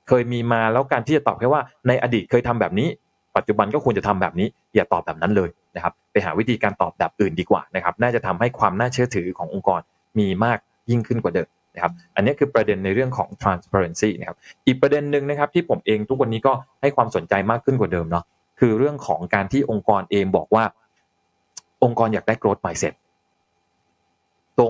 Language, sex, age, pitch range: Thai, male, 20-39, 105-135 Hz